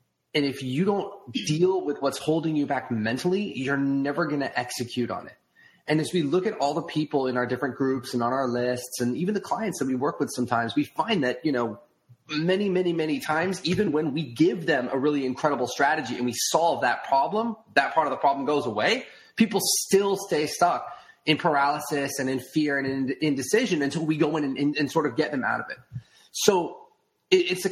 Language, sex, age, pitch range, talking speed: English, male, 30-49, 135-180 Hz, 225 wpm